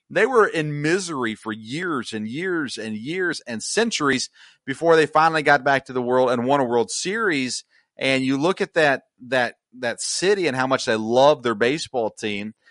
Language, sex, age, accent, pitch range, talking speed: English, male, 40-59, American, 110-150 Hz, 195 wpm